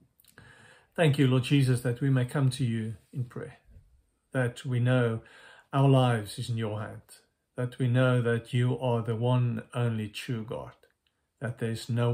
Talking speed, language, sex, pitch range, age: 175 wpm, English, male, 115-135 Hz, 50-69